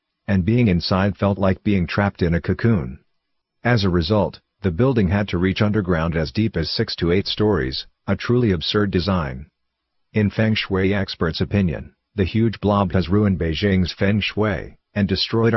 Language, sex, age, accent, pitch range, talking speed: English, male, 50-69, American, 90-105 Hz, 175 wpm